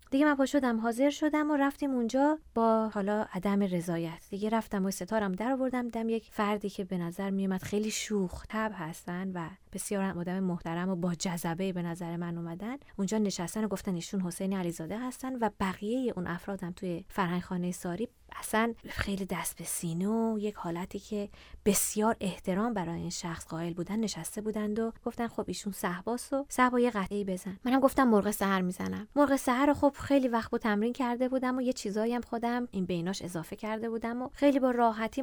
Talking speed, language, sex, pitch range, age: 180 wpm, Persian, female, 180-230 Hz, 20-39